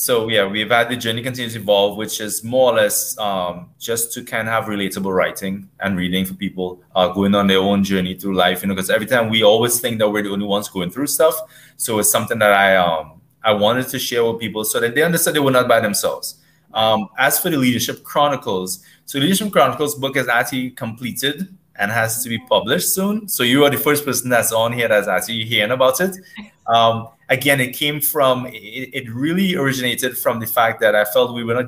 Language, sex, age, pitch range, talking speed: English, male, 20-39, 105-140 Hz, 230 wpm